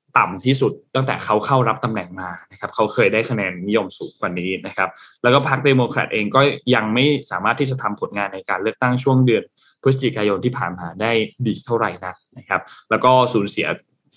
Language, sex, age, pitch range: Thai, male, 20-39, 105-140 Hz